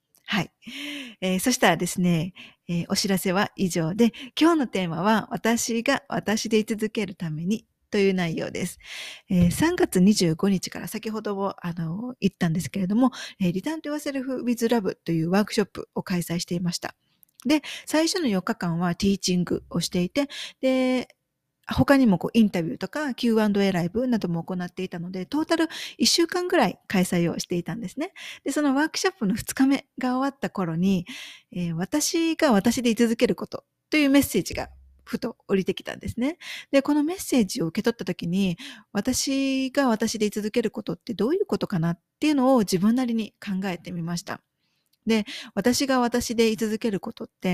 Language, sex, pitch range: Japanese, female, 185-265 Hz